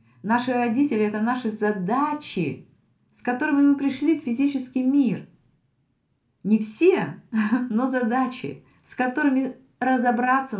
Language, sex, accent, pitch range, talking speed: Russian, female, native, 170-255 Hz, 110 wpm